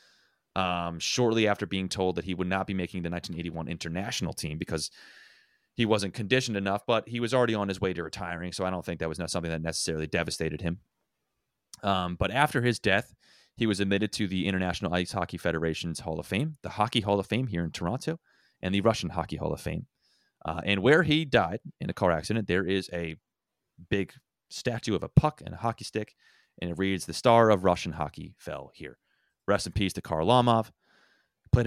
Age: 30-49